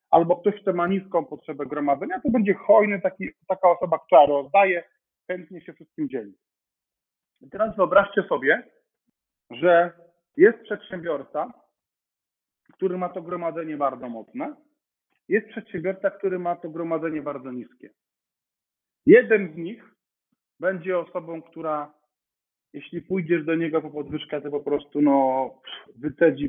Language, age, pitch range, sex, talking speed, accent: Polish, 40-59, 160-195 Hz, male, 130 wpm, native